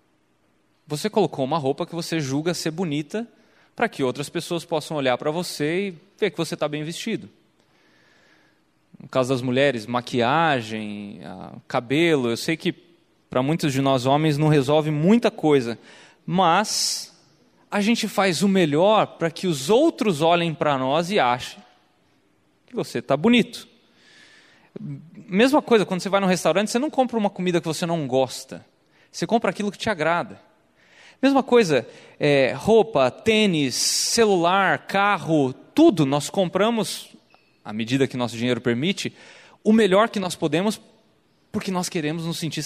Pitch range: 150-200 Hz